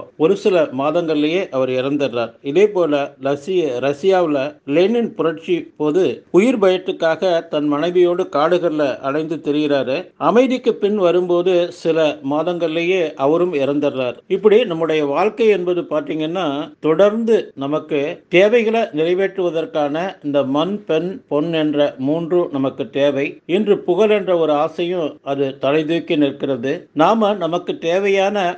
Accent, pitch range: native, 145-180 Hz